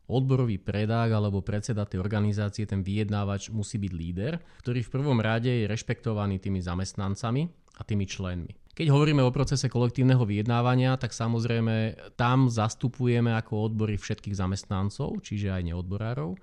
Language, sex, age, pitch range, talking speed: Slovak, male, 30-49, 105-130 Hz, 140 wpm